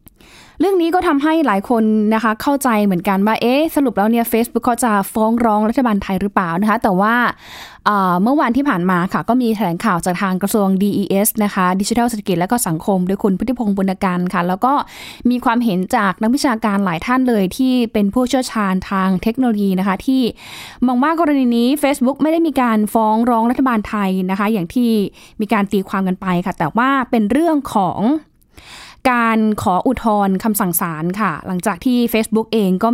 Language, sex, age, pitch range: Thai, female, 20-39, 200-250 Hz